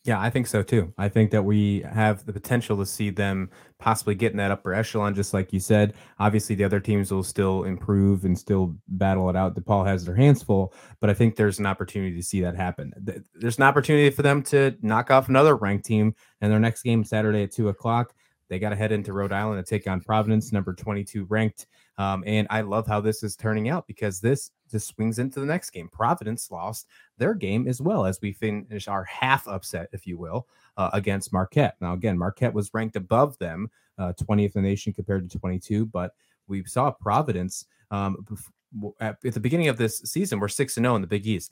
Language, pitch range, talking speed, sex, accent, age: English, 100-115 Hz, 220 wpm, male, American, 20-39